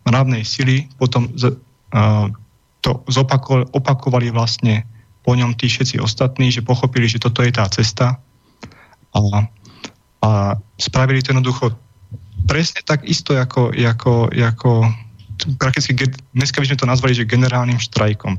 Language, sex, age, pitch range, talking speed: Slovak, male, 30-49, 110-130 Hz, 125 wpm